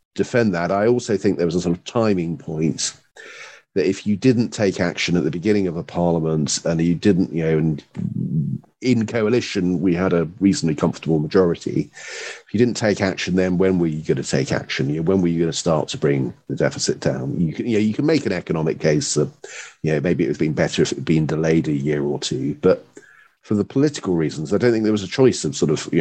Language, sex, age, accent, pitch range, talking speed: English, male, 40-59, British, 80-110 Hz, 250 wpm